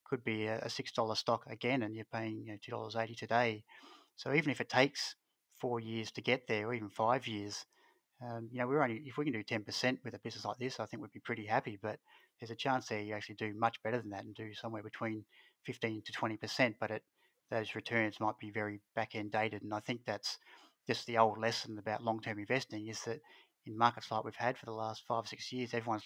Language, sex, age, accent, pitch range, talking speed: English, male, 30-49, Australian, 110-115 Hz, 250 wpm